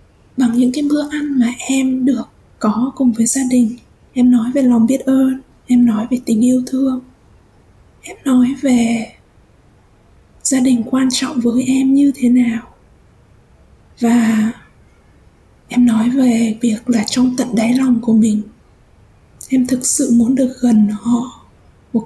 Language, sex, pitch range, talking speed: Vietnamese, female, 240-265 Hz, 155 wpm